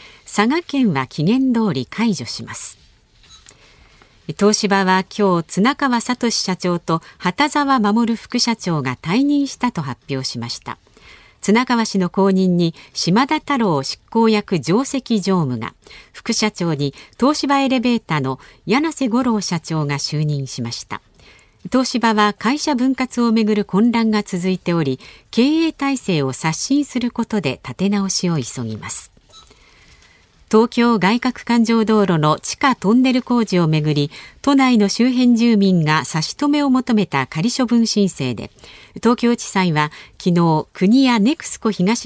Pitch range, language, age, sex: 155-245 Hz, Japanese, 50-69, female